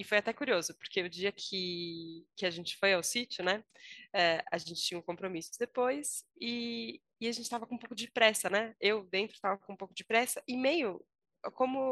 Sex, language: female, Portuguese